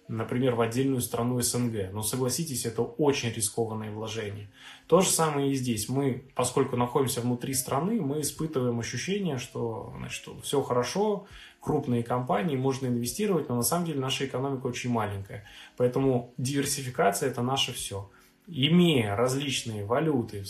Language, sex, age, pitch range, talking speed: Russian, male, 20-39, 120-145 Hz, 145 wpm